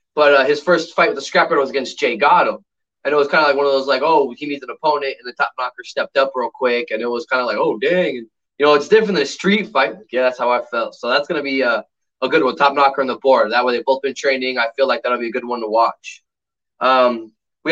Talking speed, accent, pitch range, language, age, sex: 295 wpm, American, 130-175 Hz, English, 20-39, male